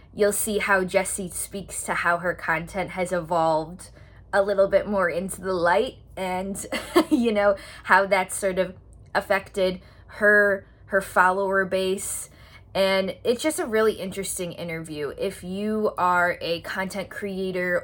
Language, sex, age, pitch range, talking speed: English, female, 20-39, 175-210 Hz, 145 wpm